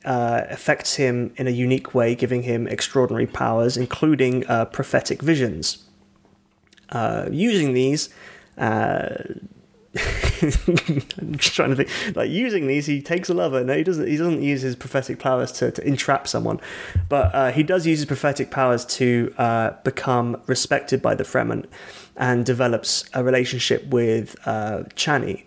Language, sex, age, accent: English, male, 20-39, British